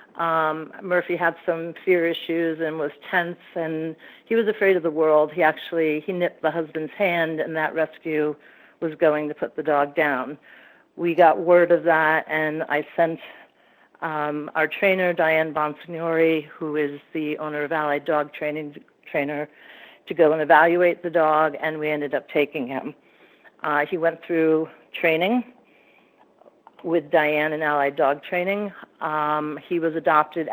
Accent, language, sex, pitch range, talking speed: American, English, female, 150-170 Hz, 160 wpm